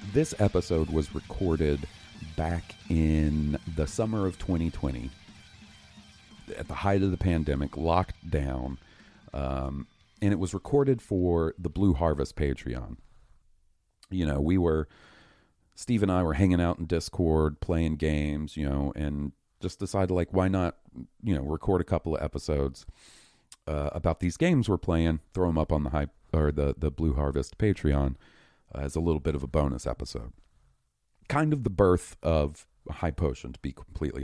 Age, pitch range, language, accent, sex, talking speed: 40-59, 75-95 Hz, English, American, male, 165 wpm